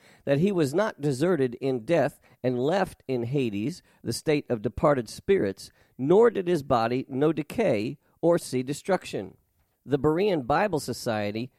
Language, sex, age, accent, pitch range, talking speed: English, male, 50-69, American, 125-170 Hz, 150 wpm